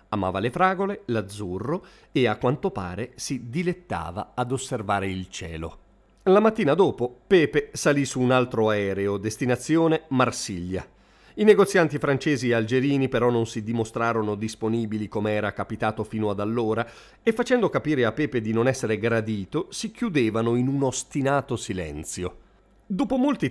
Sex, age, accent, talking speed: male, 40-59, native, 150 wpm